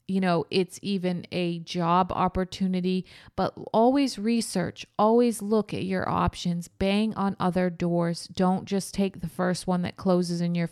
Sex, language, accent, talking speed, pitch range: female, English, American, 160 wpm, 180-220 Hz